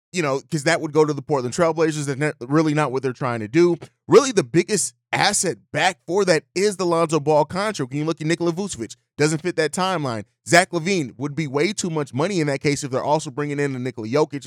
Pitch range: 135-175 Hz